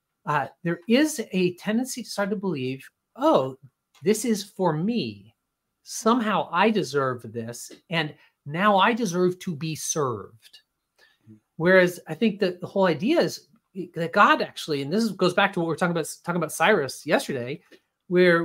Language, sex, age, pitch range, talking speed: English, male, 30-49, 160-215 Hz, 165 wpm